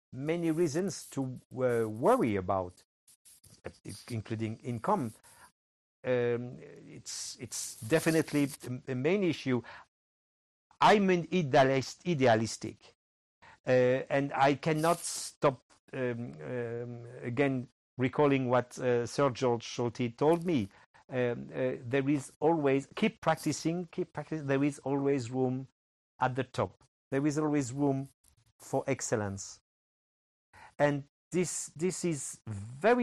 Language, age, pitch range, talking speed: English, 50-69, 120-150 Hz, 110 wpm